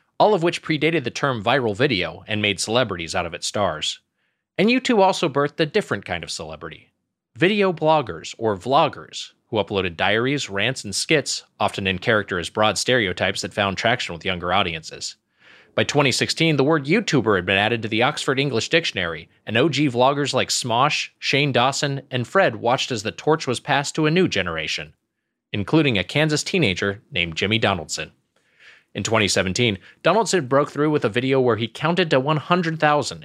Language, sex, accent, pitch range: English, male, American, 105-160 Hz